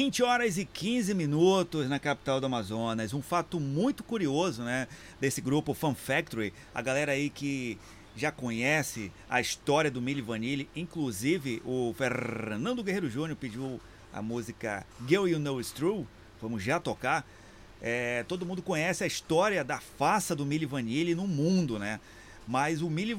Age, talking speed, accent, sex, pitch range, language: 30-49, 160 wpm, Brazilian, male, 120-175 Hz, Portuguese